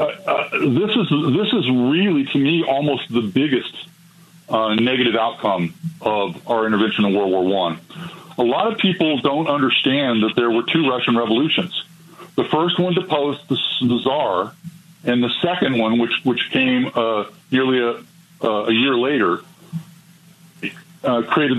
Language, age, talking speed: English, 50-69, 155 wpm